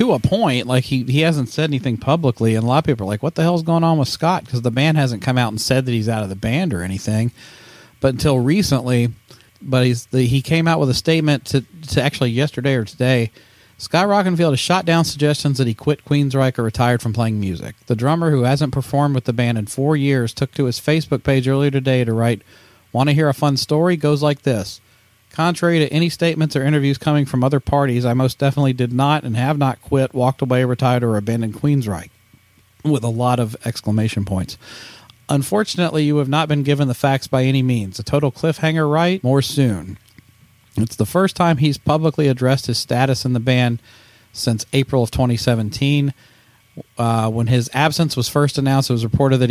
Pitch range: 115-145 Hz